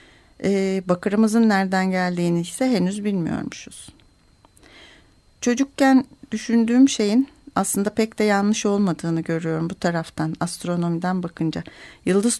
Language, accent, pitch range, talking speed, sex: Turkish, native, 180-225 Hz, 95 wpm, female